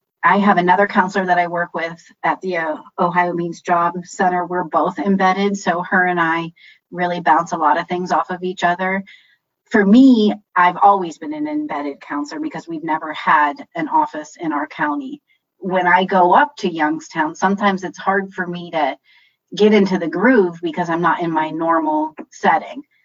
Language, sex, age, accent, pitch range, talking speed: English, female, 30-49, American, 165-195 Hz, 185 wpm